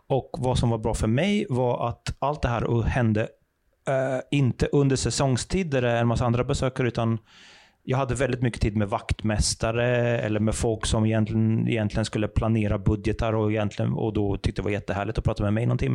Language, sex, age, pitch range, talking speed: Swedish, male, 30-49, 110-130 Hz, 195 wpm